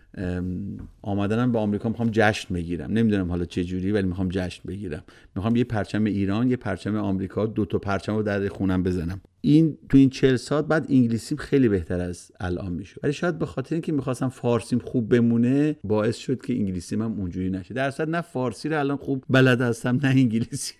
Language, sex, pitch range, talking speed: Persian, male, 95-120 Hz, 190 wpm